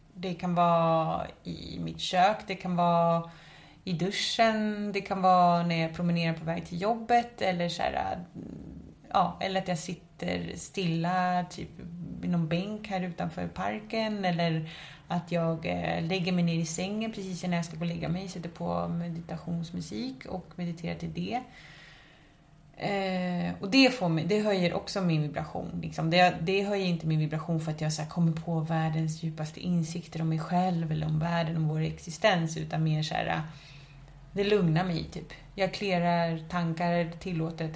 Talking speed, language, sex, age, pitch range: 170 wpm, English, female, 30-49, 160-185 Hz